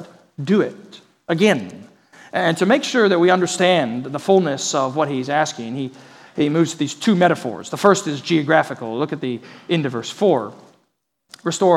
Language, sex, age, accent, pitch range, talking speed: English, male, 40-59, American, 145-195 Hz, 175 wpm